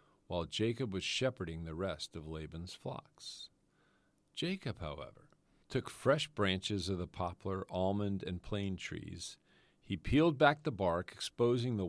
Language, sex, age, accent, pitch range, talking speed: English, male, 50-69, American, 90-125 Hz, 140 wpm